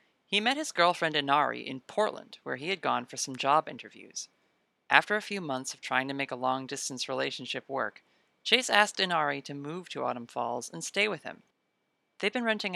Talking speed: 200 wpm